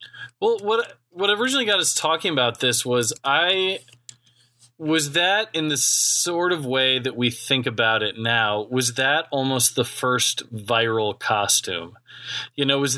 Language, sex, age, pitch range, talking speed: English, male, 20-39, 120-145 Hz, 155 wpm